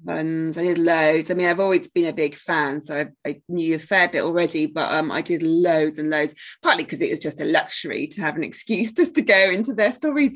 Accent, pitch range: British, 165-210 Hz